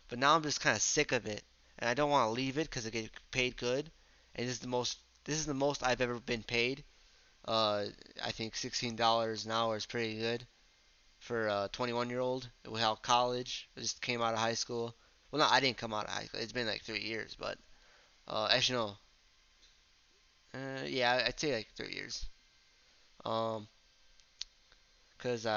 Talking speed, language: 195 wpm, English